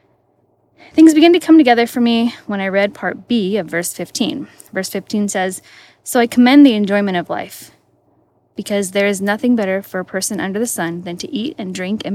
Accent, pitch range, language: American, 200-260 Hz, English